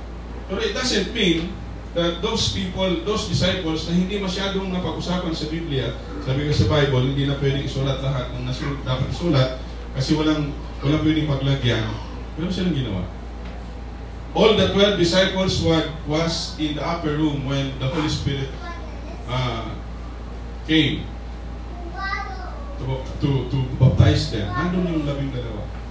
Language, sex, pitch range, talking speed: English, male, 120-170 Hz, 110 wpm